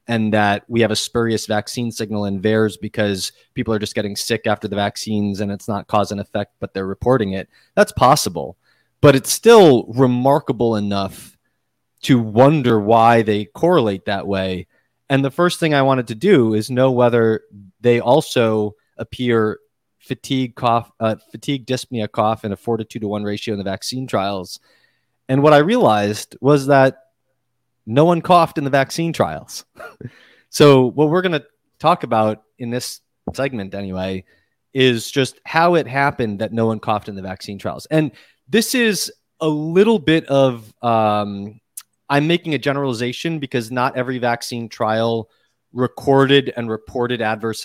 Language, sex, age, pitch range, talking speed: English, male, 30-49, 105-135 Hz, 165 wpm